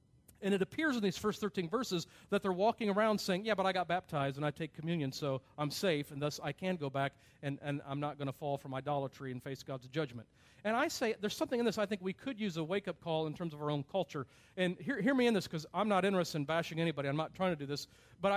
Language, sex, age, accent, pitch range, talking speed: English, male, 40-59, American, 140-195 Hz, 280 wpm